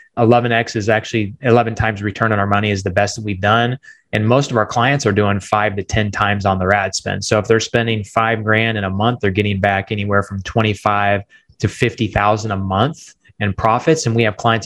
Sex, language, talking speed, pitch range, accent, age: male, English, 225 wpm, 105-120 Hz, American, 20-39